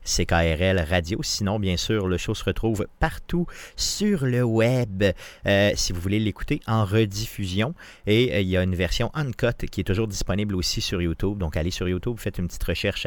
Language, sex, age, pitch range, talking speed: French, male, 40-59, 90-115 Hz, 195 wpm